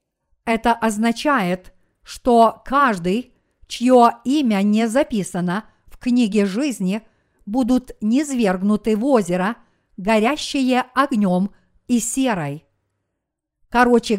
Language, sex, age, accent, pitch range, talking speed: Russian, female, 50-69, native, 200-250 Hz, 85 wpm